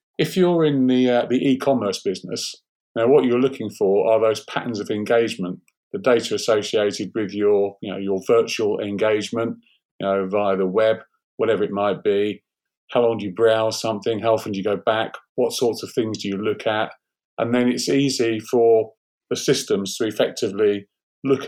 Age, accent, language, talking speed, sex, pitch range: 40-59, British, English, 185 wpm, male, 105-130 Hz